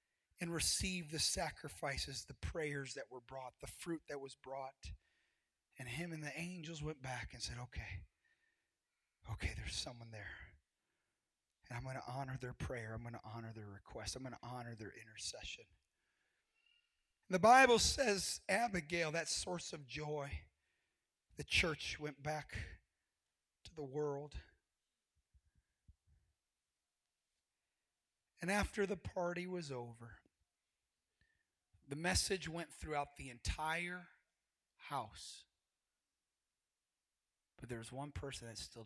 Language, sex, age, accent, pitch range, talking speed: English, male, 30-49, American, 95-155 Hz, 125 wpm